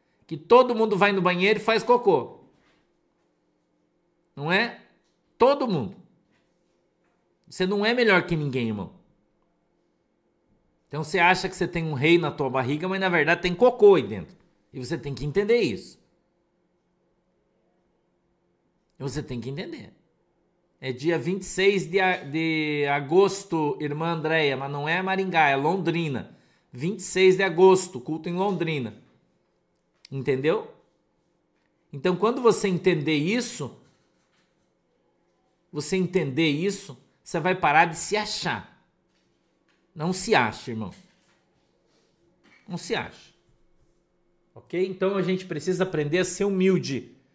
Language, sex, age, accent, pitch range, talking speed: Portuguese, male, 50-69, Brazilian, 150-190 Hz, 125 wpm